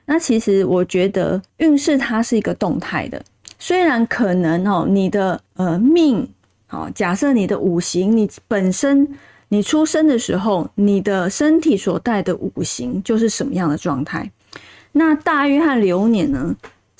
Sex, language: female, Chinese